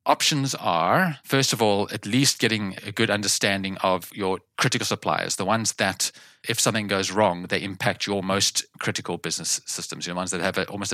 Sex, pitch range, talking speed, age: male, 90-115 Hz, 185 wpm, 30-49